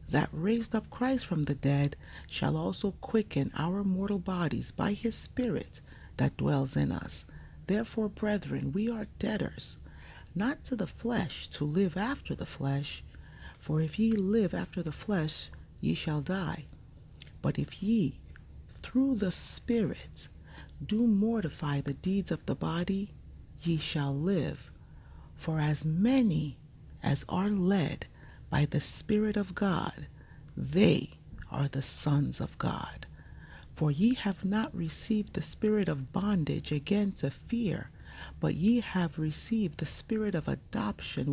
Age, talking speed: 40-59, 140 wpm